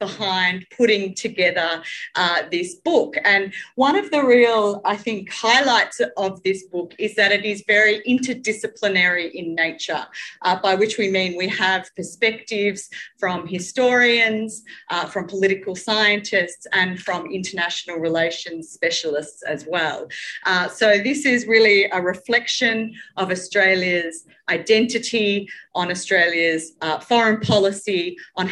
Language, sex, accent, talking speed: English, female, Australian, 130 wpm